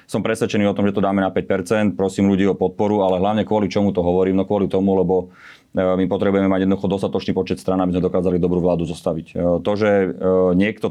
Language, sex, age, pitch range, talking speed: Slovak, male, 30-49, 90-100 Hz, 215 wpm